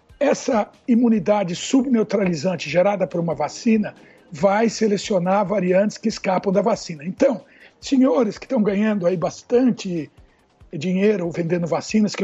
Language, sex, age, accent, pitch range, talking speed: Portuguese, male, 60-79, Brazilian, 180-225 Hz, 125 wpm